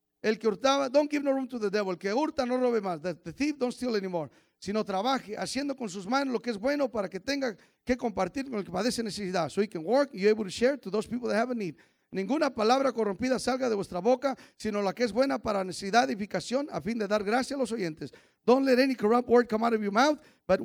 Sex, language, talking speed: male, English, 250 wpm